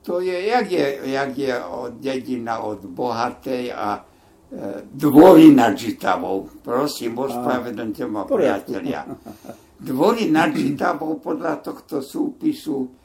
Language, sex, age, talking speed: Slovak, male, 60-79, 100 wpm